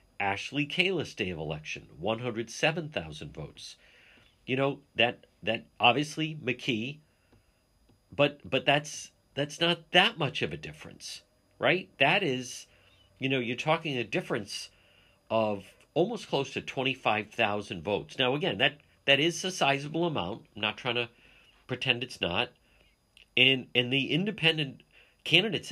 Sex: male